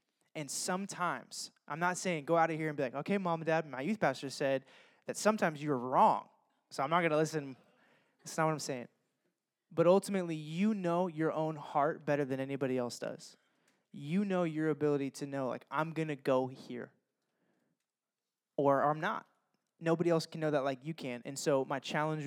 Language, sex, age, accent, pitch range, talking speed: English, male, 20-39, American, 145-185 Hz, 200 wpm